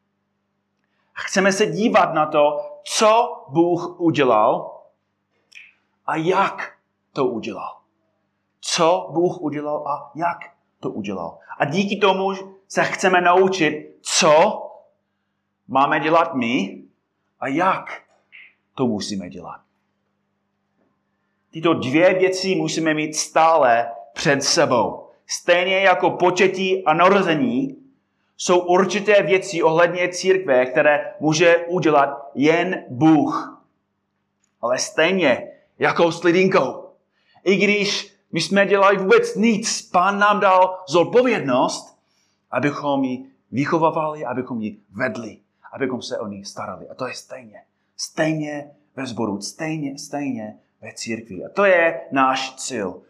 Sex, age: male, 30-49